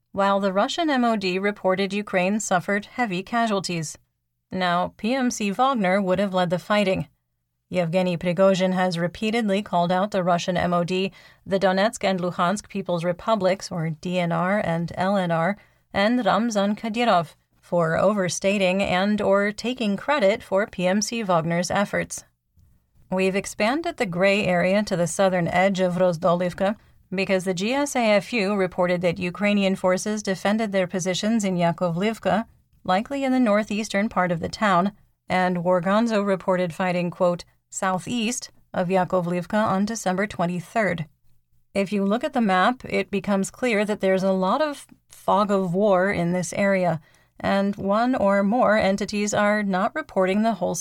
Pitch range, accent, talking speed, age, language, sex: 180-205 Hz, American, 145 wpm, 30-49, English, female